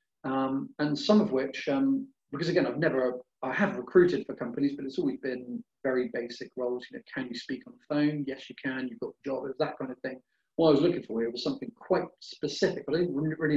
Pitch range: 125-165 Hz